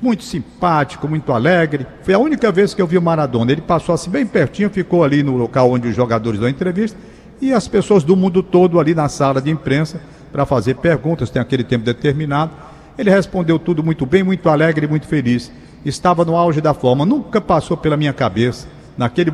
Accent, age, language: Brazilian, 60-79, Portuguese